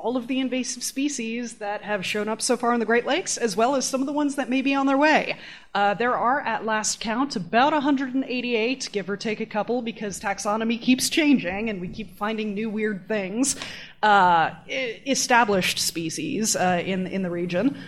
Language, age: English, 30-49